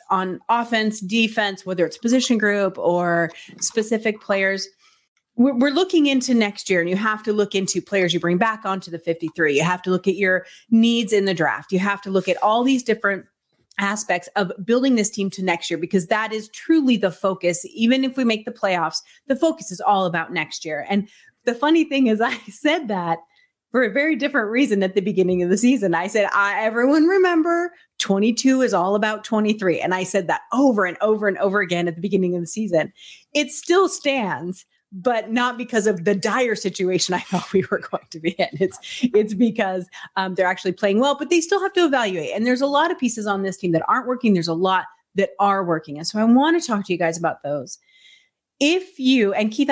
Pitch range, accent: 185-250 Hz, American